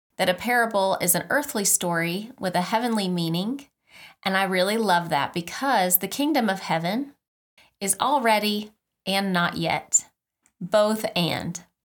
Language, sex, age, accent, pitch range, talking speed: English, female, 30-49, American, 180-225 Hz, 140 wpm